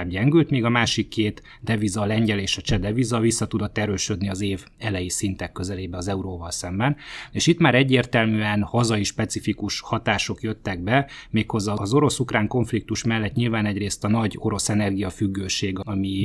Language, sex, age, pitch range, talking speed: Hungarian, male, 30-49, 100-115 Hz, 155 wpm